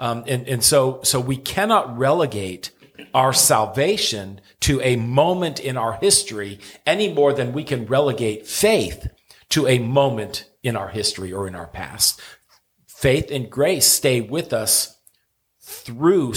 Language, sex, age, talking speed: English, male, 40-59, 145 wpm